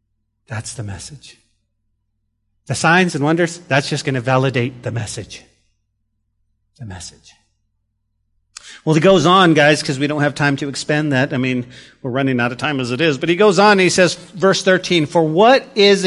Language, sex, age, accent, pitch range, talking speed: English, male, 40-59, American, 130-200 Hz, 190 wpm